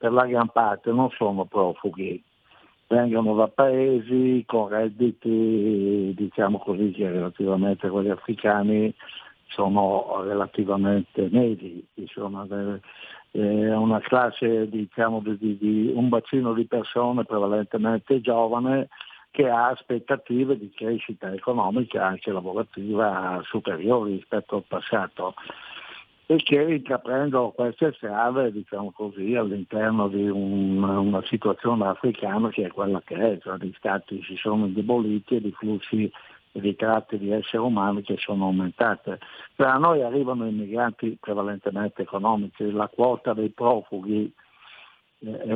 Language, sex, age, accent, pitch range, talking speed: Italian, male, 60-79, native, 100-120 Hz, 120 wpm